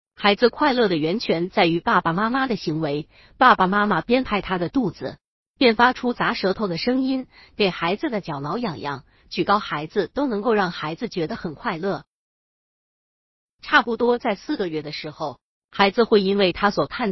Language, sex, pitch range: Chinese, female, 170-245 Hz